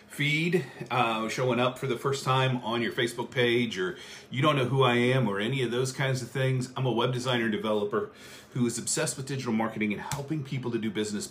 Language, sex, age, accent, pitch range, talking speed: English, male, 40-59, American, 105-130 Hz, 230 wpm